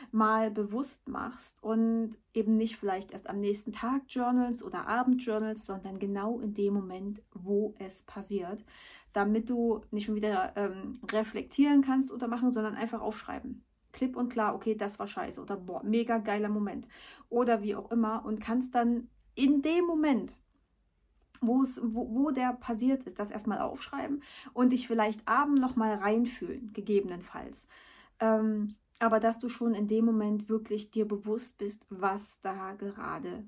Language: German